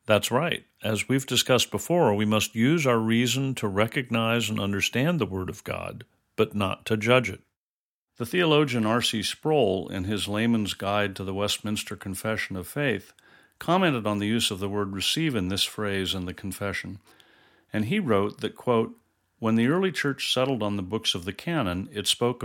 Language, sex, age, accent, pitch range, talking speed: English, male, 50-69, American, 95-125 Hz, 190 wpm